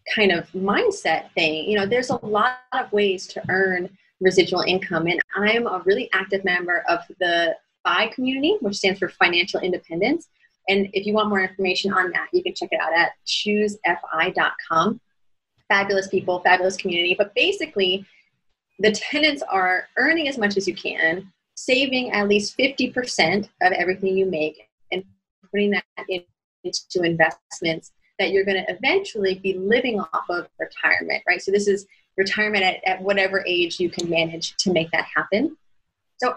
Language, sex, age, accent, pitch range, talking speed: English, female, 30-49, American, 185-220 Hz, 165 wpm